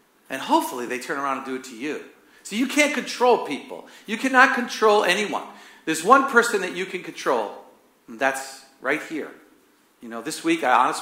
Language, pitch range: English, 130-205 Hz